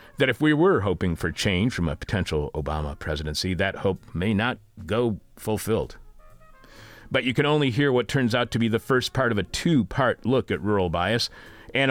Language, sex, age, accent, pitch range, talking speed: English, male, 40-59, American, 95-125 Hz, 195 wpm